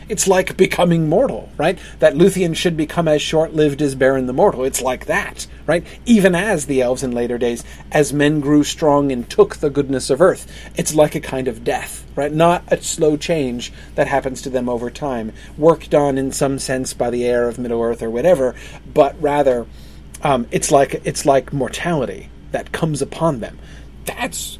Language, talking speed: English, 195 wpm